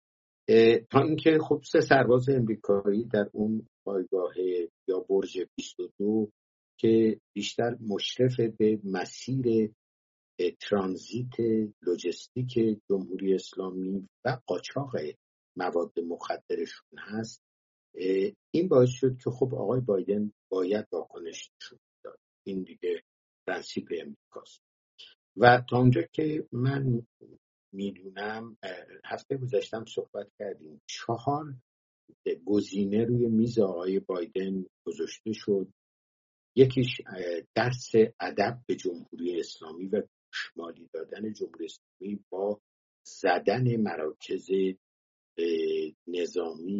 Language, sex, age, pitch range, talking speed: English, male, 60-79, 95-155 Hz, 95 wpm